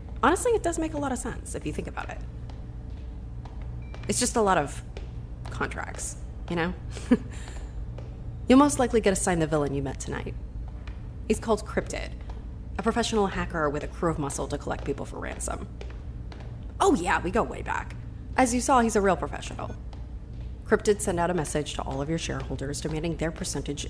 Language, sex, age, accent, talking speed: English, female, 30-49, American, 185 wpm